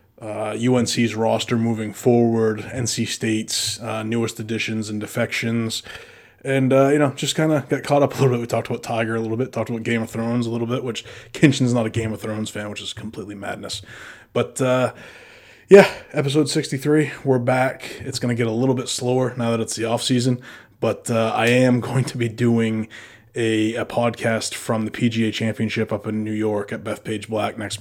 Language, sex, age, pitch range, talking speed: English, male, 20-39, 110-125 Hz, 205 wpm